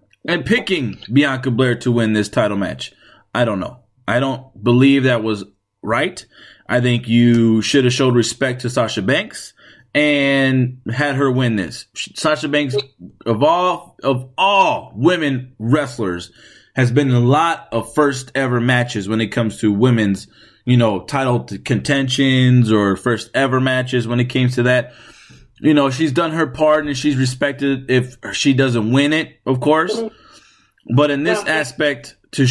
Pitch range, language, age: 115-140 Hz, English, 20-39